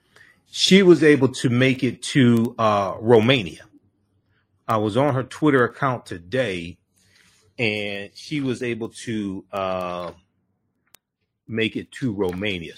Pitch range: 95-130 Hz